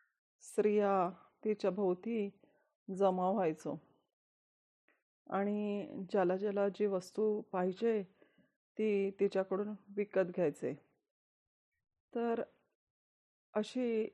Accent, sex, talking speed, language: native, female, 70 wpm, Marathi